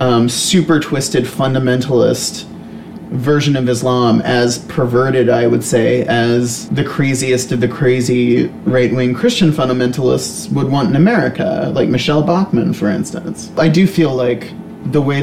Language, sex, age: English, male, 30-49